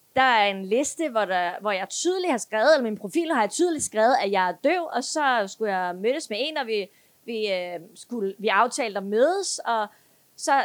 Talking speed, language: 230 wpm, Danish